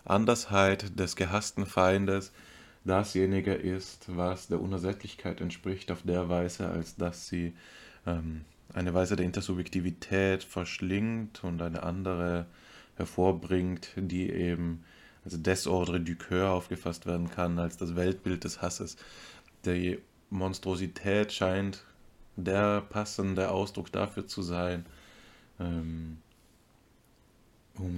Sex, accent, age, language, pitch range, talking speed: male, German, 20-39, German, 90-100 Hz, 110 wpm